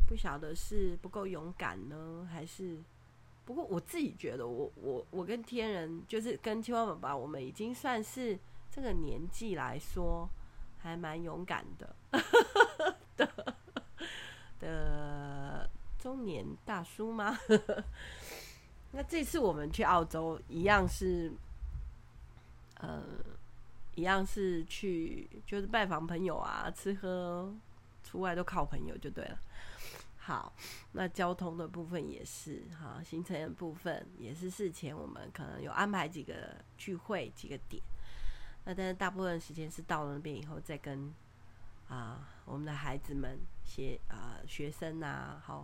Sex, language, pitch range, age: female, Chinese, 140-190 Hz, 30-49